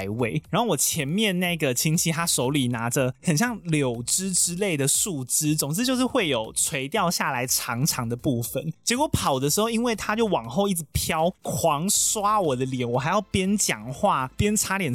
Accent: native